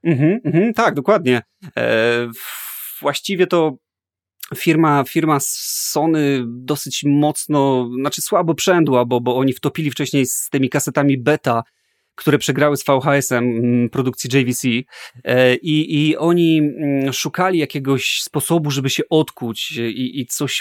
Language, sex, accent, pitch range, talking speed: Polish, male, native, 125-155 Hz, 115 wpm